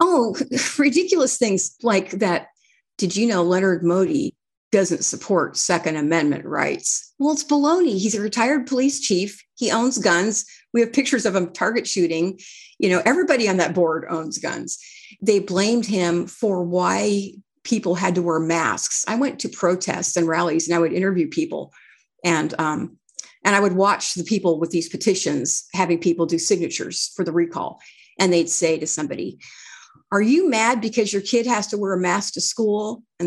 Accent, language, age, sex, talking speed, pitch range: American, English, 50-69, female, 175 wpm, 175-240 Hz